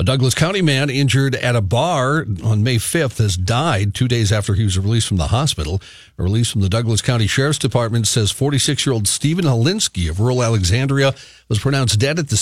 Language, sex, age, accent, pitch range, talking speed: English, male, 50-69, American, 105-135 Hz, 205 wpm